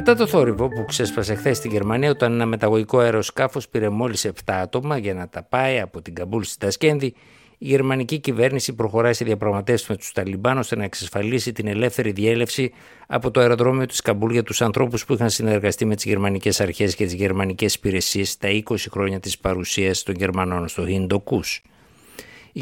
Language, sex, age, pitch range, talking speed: Greek, male, 60-79, 100-125 Hz, 185 wpm